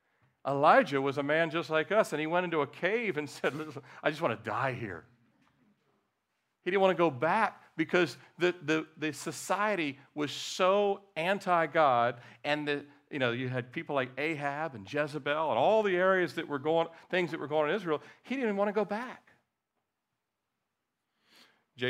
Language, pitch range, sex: English, 105-155 Hz, male